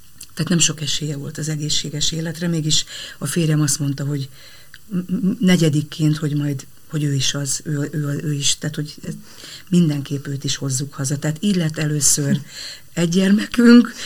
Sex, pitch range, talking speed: female, 150-165 Hz, 160 wpm